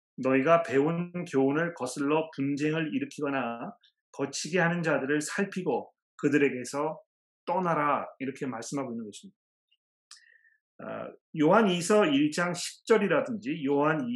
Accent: native